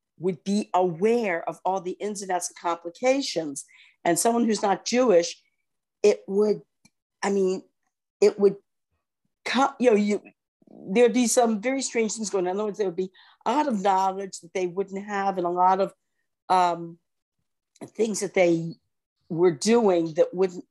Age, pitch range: 50-69, 170-210 Hz